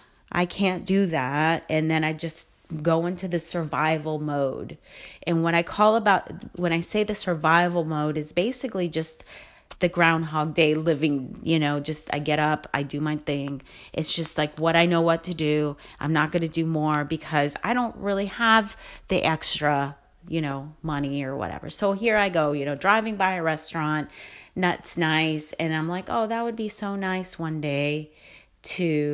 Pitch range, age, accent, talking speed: 150-200 Hz, 30-49, American, 190 wpm